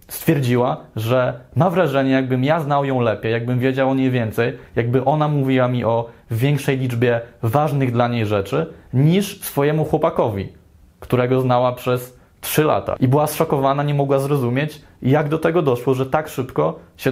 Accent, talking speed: native, 165 wpm